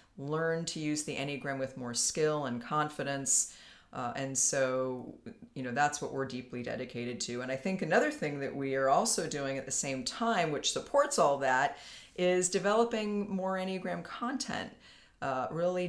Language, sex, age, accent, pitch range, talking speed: English, female, 40-59, American, 140-185 Hz, 175 wpm